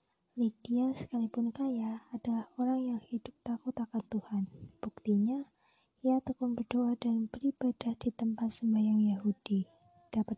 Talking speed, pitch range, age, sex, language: 120 wpm, 215-245 Hz, 20-39, female, Indonesian